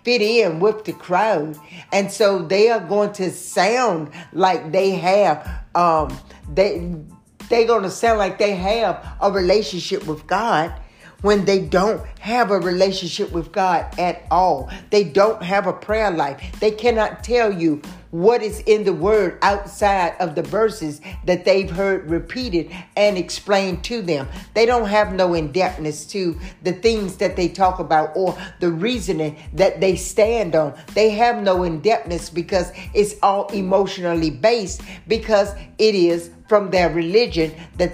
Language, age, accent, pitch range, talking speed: English, 60-79, American, 175-210 Hz, 160 wpm